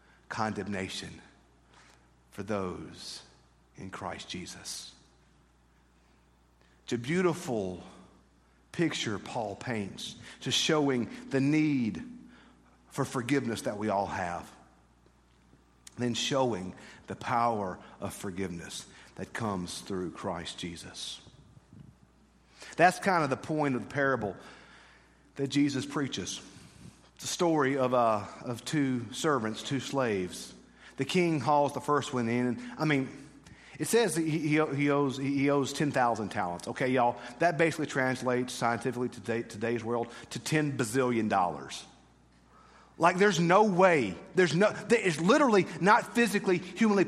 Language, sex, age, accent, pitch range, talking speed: English, male, 50-69, American, 100-165 Hz, 125 wpm